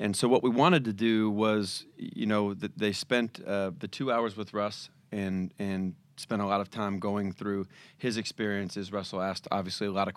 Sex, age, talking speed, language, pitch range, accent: male, 30-49, 205 wpm, English, 100-115 Hz, American